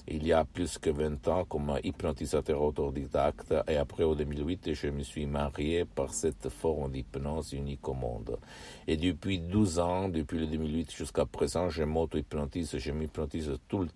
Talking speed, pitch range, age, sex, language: 185 wpm, 75-90 Hz, 60-79, male, Italian